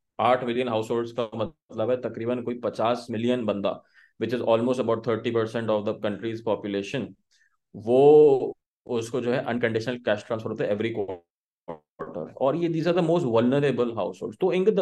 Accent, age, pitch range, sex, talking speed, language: Indian, 30-49, 115-145 Hz, male, 95 wpm, English